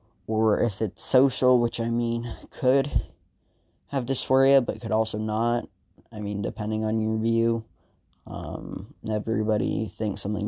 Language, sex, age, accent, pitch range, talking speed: English, male, 10-29, American, 105-120 Hz, 135 wpm